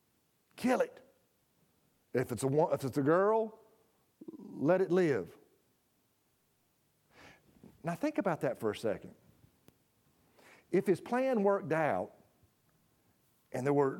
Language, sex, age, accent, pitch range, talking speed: English, male, 50-69, American, 145-210 Hz, 115 wpm